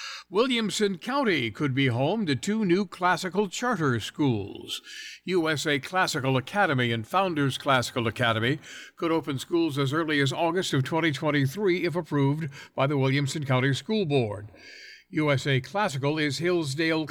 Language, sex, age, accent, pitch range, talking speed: English, male, 60-79, American, 125-175 Hz, 135 wpm